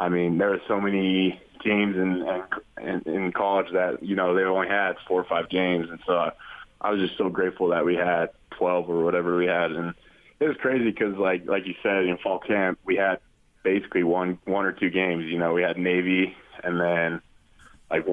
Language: English